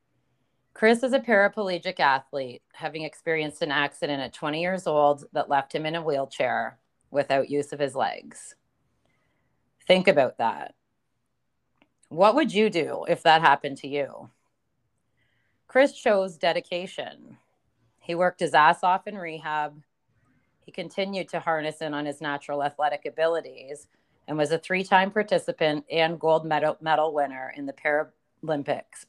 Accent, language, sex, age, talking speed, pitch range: American, English, female, 30-49, 145 wpm, 145-185 Hz